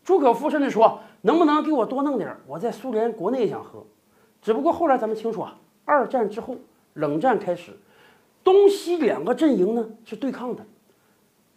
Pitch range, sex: 220-330 Hz, male